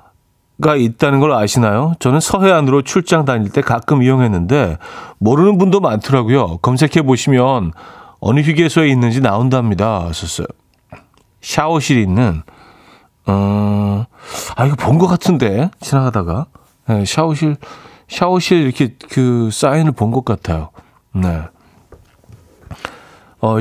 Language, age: Korean, 40-59